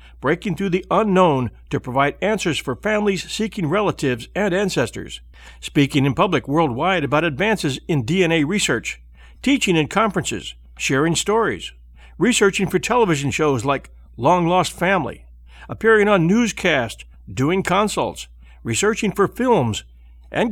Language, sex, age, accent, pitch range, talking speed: English, male, 60-79, American, 120-200 Hz, 130 wpm